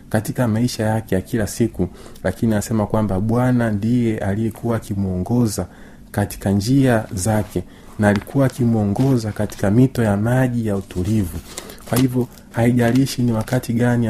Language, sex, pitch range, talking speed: Swahili, male, 100-120 Hz, 130 wpm